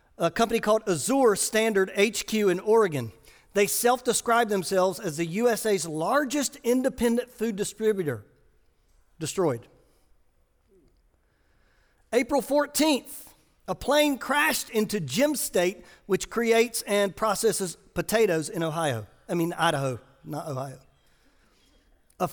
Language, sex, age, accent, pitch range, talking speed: English, male, 50-69, American, 160-220 Hz, 110 wpm